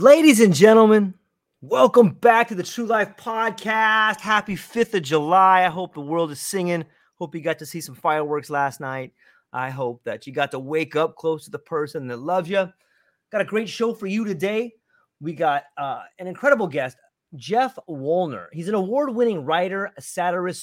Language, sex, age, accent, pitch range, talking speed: English, male, 30-49, American, 150-205 Hz, 190 wpm